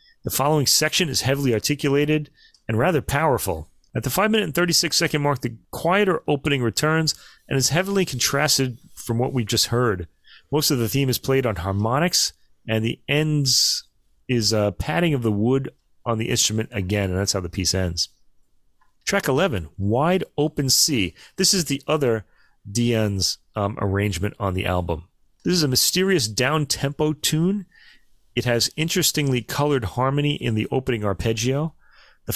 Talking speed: 165 wpm